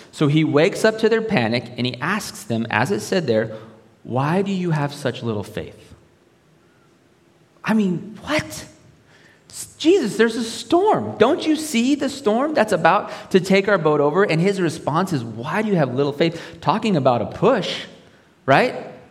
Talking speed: 175 wpm